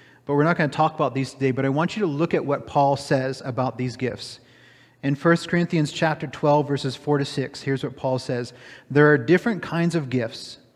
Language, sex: English, male